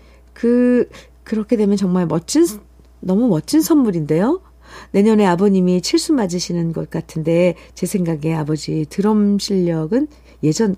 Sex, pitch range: female, 180-290 Hz